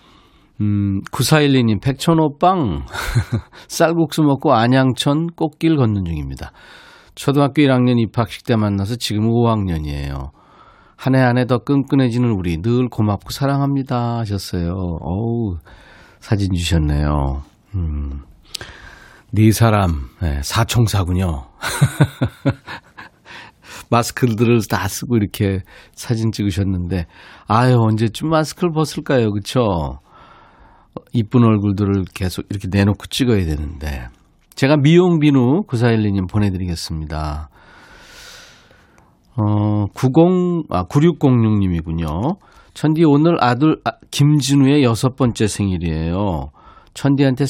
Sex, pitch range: male, 95-135 Hz